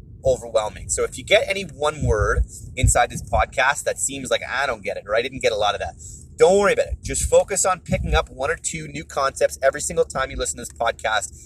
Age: 30-49